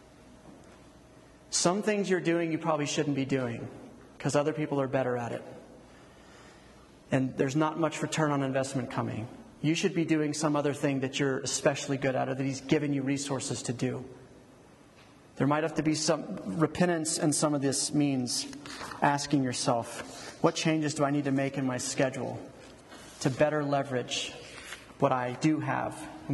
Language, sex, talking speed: English, male, 175 wpm